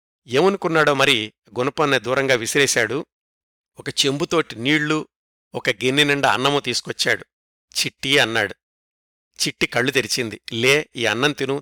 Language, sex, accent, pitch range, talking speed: Telugu, male, native, 125-155 Hz, 110 wpm